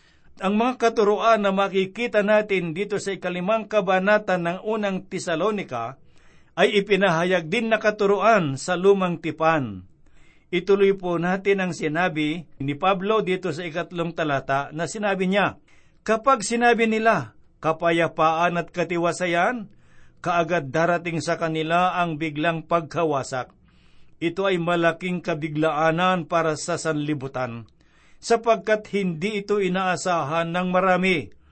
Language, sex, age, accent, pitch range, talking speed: Filipino, male, 50-69, native, 165-200 Hz, 115 wpm